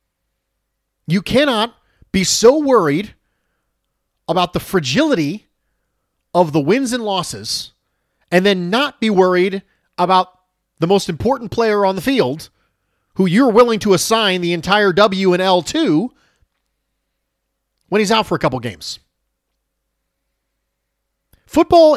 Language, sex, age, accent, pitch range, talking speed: English, male, 40-59, American, 165-245 Hz, 125 wpm